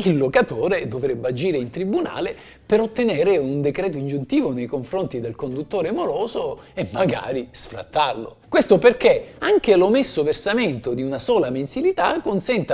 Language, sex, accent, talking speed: Italian, male, native, 135 wpm